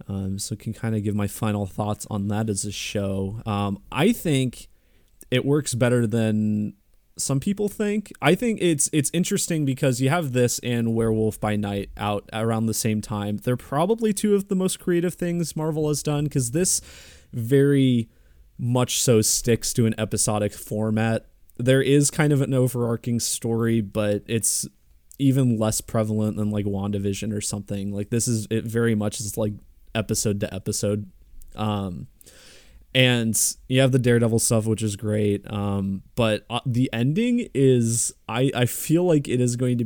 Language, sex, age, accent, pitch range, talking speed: English, male, 20-39, American, 105-135 Hz, 175 wpm